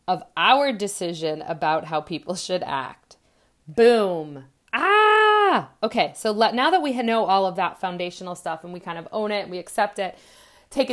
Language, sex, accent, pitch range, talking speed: English, female, American, 190-240 Hz, 170 wpm